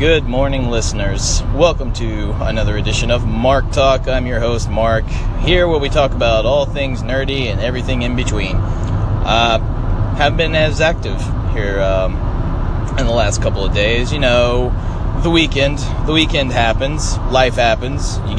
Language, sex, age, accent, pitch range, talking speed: English, male, 30-49, American, 100-125 Hz, 160 wpm